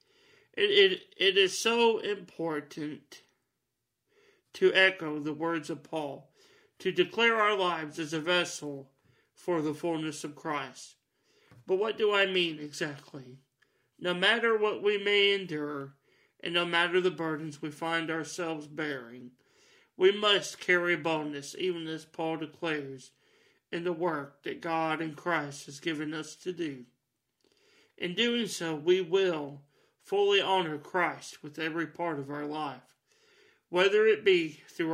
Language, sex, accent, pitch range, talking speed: English, male, American, 150-205 Hz, 140 wpm